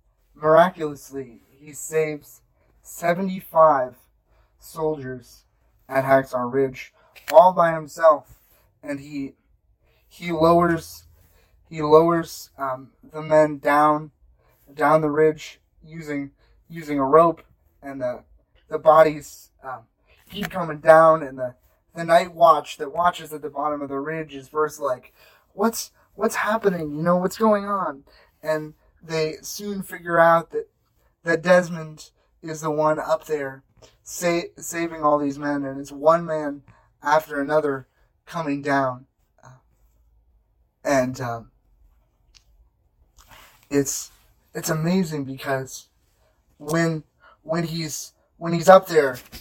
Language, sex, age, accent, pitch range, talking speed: English, male, 20-39, American, 135-165 Hz, 120 wpm